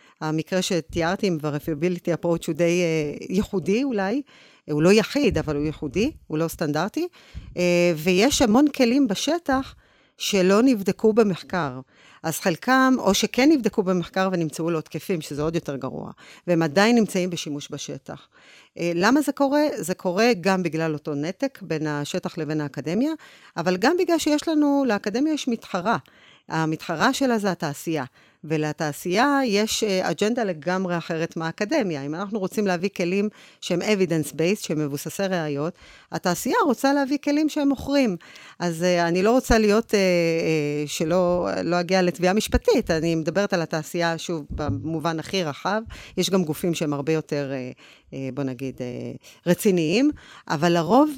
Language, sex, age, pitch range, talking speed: Hebrew, female, 40-59, 160-220 Hz, 150 wpm